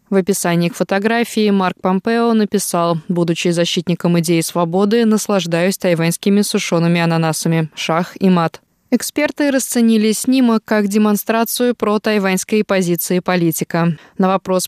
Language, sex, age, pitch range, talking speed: Russian, female, 20-39, 175-210 Hz, 120 wpm